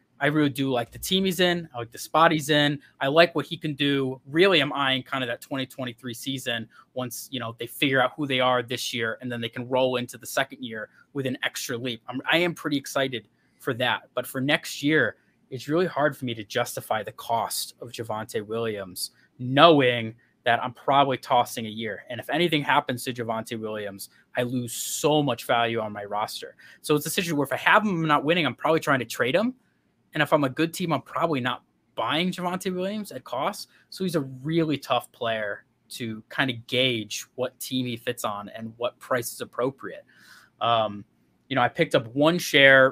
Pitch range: 120-150 Hz